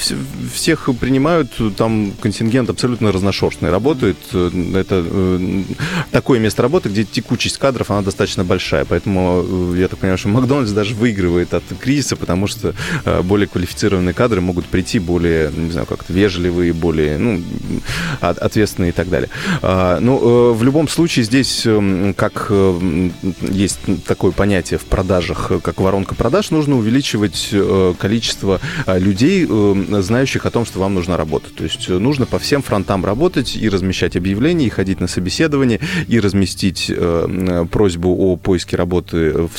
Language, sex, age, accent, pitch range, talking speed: Russian, male, 20-39, native, 90-115 Hz, 140 wpm